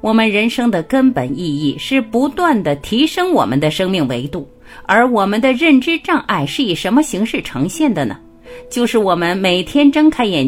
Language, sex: Chinese, female